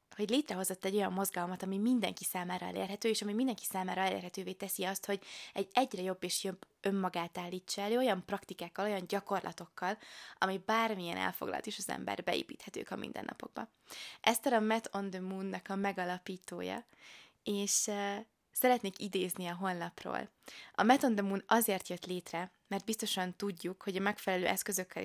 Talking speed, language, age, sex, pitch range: 155 wpm, Hungarian, 20-39, female, 185-215 Hz